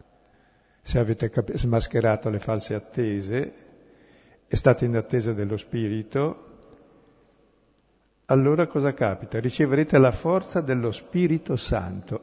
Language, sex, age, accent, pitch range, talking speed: Italian, male, 60-79, native, 110-145 Hz, 105 wpm